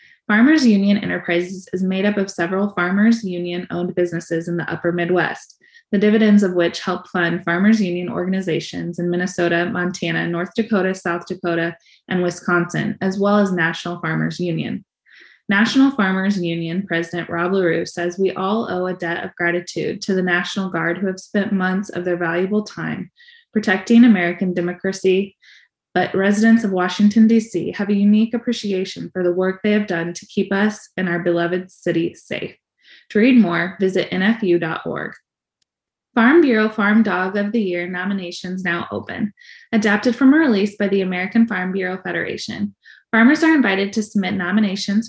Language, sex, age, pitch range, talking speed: English, female, 20-39, 175-210 Hz, 160 wpm